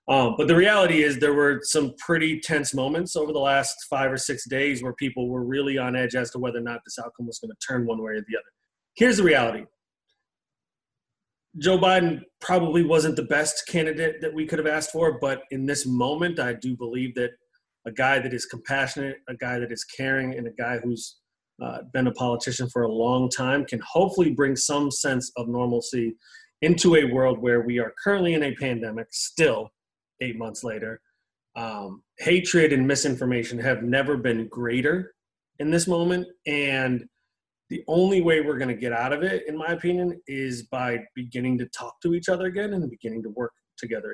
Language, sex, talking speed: English, male, 200 wpm